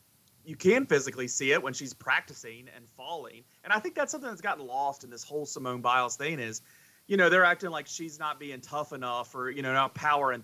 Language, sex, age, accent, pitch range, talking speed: English, male, 30-49, American, 125-155 Hz, 230 wpm